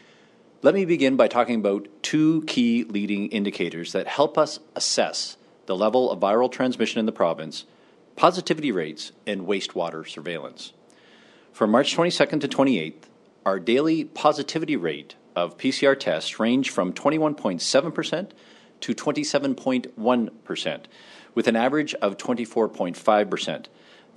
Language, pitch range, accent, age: English, 105-145 Hz, American, 40-59